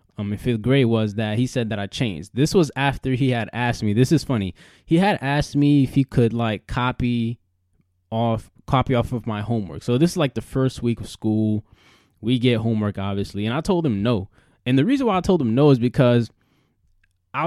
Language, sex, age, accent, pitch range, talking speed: English, male, 20-39, American, 115-135 Hz, 220 wpm